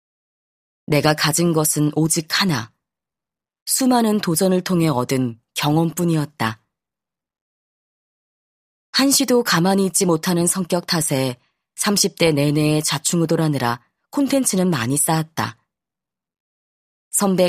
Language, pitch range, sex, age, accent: Korean, 140-180 Hz, female, 20-39, native